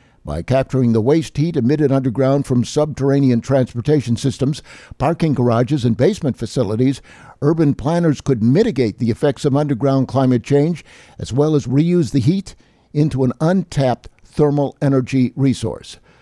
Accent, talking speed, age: American, 140 wpm, 60-79